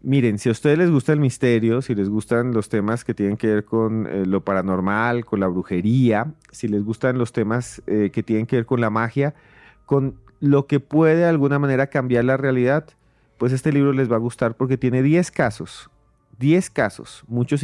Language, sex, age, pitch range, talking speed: Spanish, male, 30-49, 110-135 Hz, 210 wpm